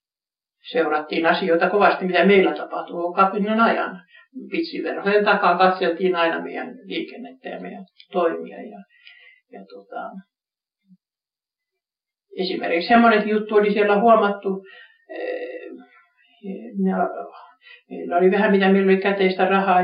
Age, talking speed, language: 60-79, 105 wpm, Finnish